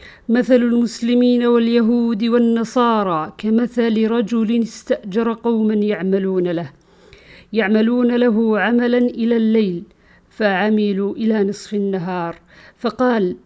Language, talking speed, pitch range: Arabic, 90 wpm, 195-235 Hz